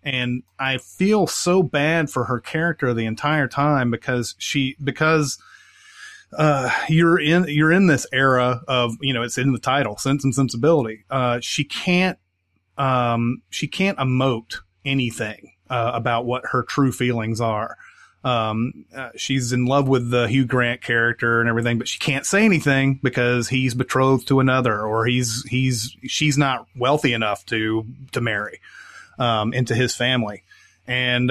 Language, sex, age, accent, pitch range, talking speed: English, male, 30-49, American, 115-140 Hz, 160 wpm